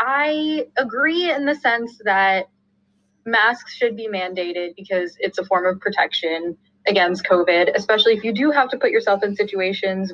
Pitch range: 195-250 Hz